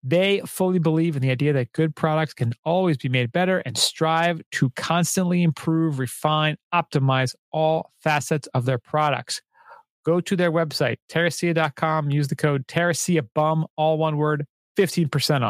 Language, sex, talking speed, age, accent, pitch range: English, male, 150 wpm, 30-49, American, 145-170 Hz